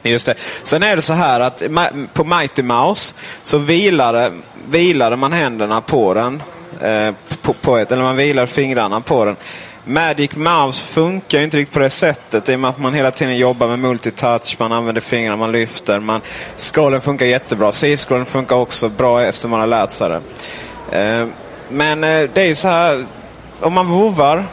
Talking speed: 175 wpm